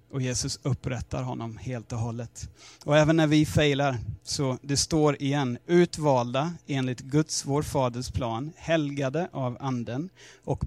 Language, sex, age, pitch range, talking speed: Swedish, male, 30-49, 120-150 Hz, 145 wpm